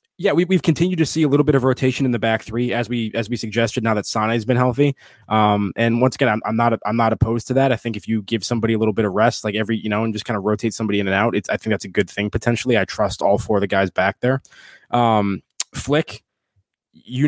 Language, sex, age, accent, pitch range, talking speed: English, male, 20-39, American, 105-125 Hz, 285 wpm